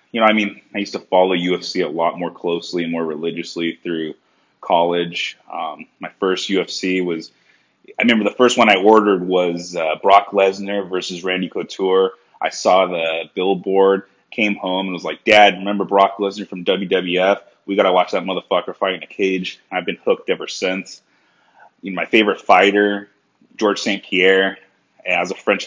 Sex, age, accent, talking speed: male, 20-39, American, 180 wpm